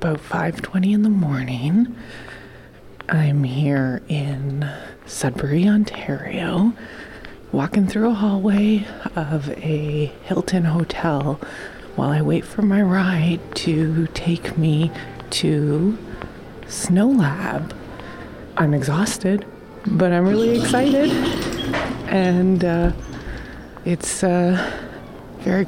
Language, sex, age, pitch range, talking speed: English, female, 30-49, 150-190 Hz, 95 wpm